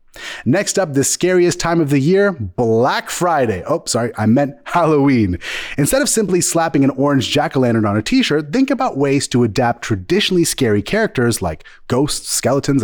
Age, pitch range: 30-49, 115-185 Hz